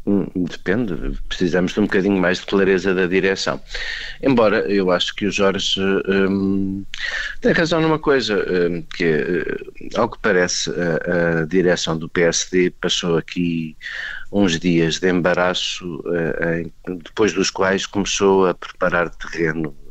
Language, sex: Portuguese, male